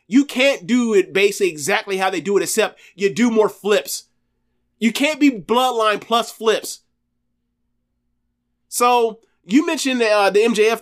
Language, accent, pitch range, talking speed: English, American, 165-240 Hz, 150 wpm